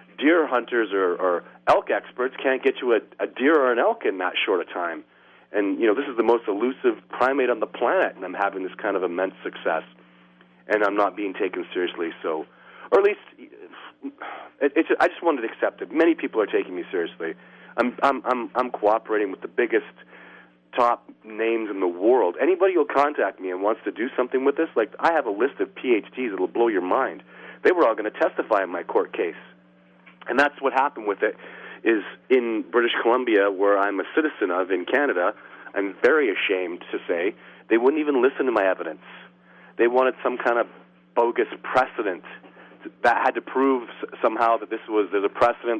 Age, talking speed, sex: 40-59, 205 wpm, male